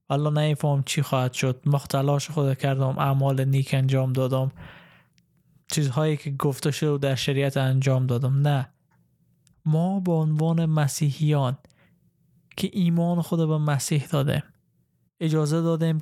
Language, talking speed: Persian, 125 wpm